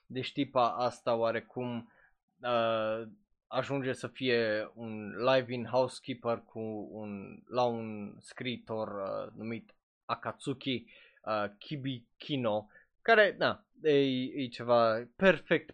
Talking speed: 95 wpm